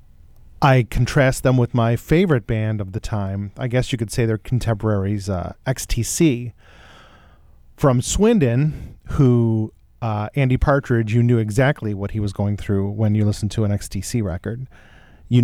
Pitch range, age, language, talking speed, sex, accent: 105-130 Hz, 40-59, English, 165 wpm, male, American